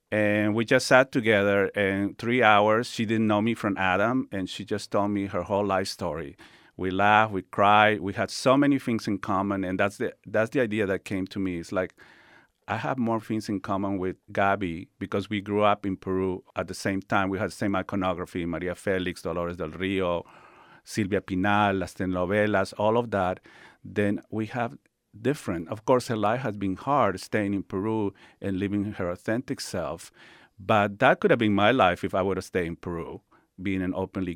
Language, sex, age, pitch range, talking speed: English, male, 50-69, 95-110 Hz, 205 wpm